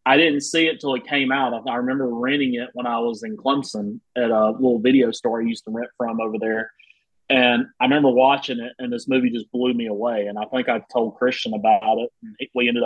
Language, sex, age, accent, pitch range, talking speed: English, male, 30-49, American, 115-140 Hz, 245 wpm